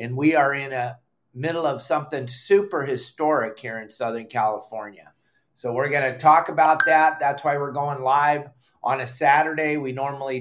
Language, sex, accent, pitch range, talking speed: English, male, American, 125-155 Hz, 180 wpm